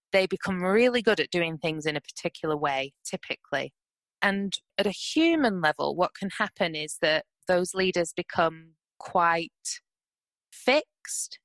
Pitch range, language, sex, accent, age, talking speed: 165-210 Hz, English, female, British, 20-39, 140 wpm